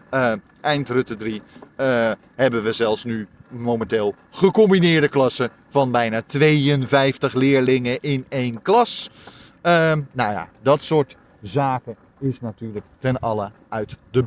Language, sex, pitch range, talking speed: Dutch, male, 115-160 Hz, 130 wpm